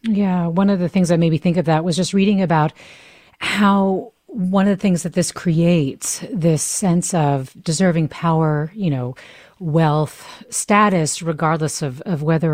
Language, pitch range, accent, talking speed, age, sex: English, 150-195 Hz, American, 170 wpm, 40-59, female